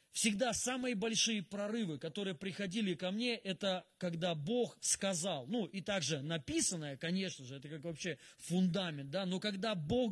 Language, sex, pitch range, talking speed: Russian, male, 160-200 Hz, 155 wpm